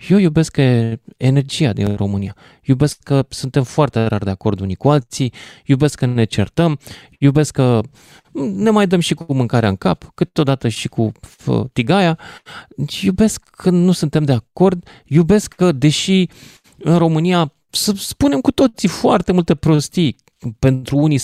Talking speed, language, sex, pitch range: 155 wpm, Romanian, male, 130-180 Hz